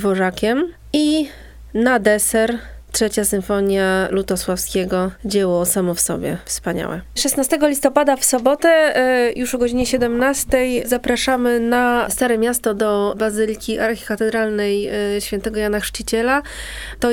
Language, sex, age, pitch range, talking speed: Polish, female, 20-39, 205-245 Hz, 110 wpm